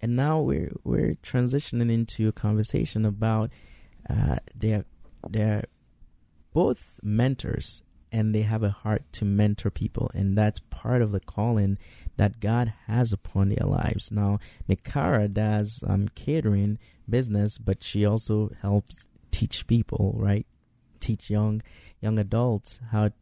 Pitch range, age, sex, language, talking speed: 100-120 Hz, 20-39, male, English, 135 wpm